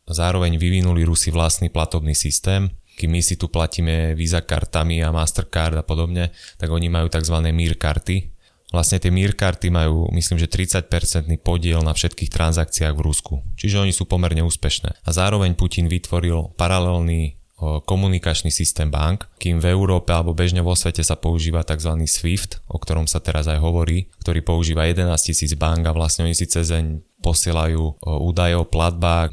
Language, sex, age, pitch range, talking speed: Slovak, male, 20-39, 80-90 Hz, 165 wpm